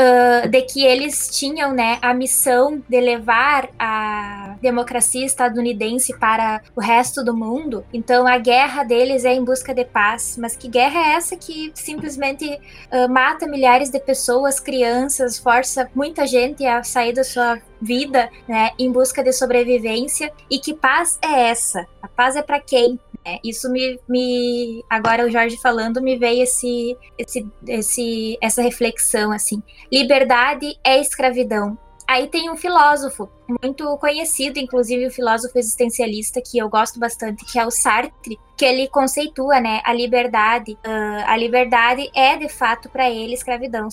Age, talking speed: 10-29, 155 wpm